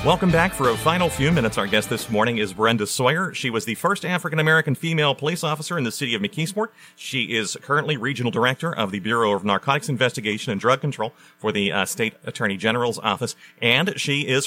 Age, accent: 40-59, American